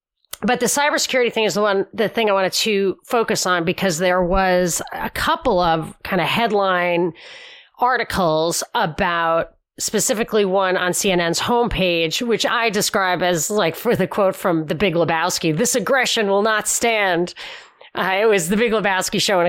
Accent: American